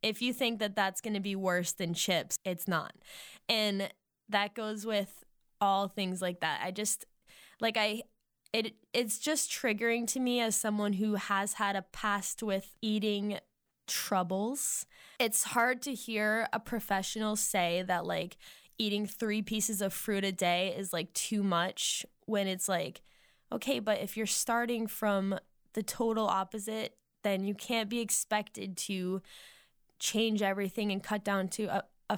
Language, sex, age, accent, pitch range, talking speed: English, female, 10-29, American, 190-220 Hz, 160 wpm